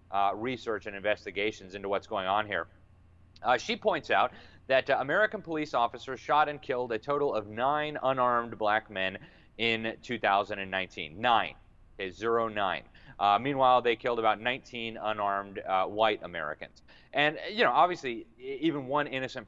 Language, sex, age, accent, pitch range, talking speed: English, male, 30-49, American, 105-145 Hz, 155 wpm